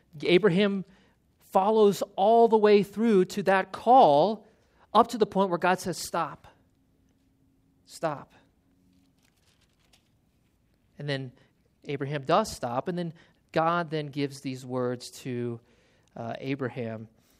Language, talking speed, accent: English, 115 wpm, American